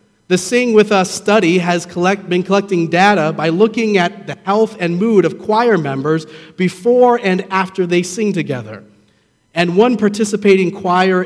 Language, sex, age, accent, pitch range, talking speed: English, male, 40-59, American, 155-200 Hz, 155 wpm